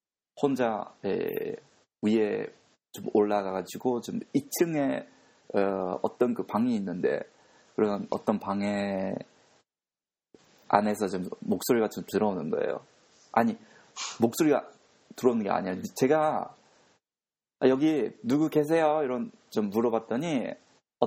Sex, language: male, Japanese